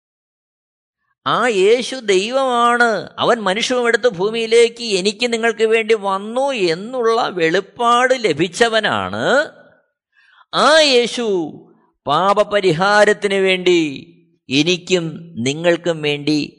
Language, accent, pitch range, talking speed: Malayalam, native, 180-255 Hz, 70 wpm